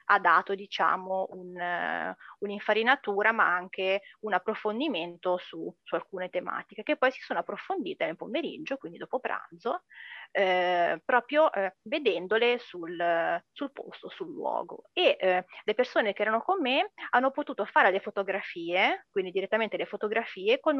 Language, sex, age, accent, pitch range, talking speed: English, female, 30-49, Italian, 185-275 Hz, 140 wpm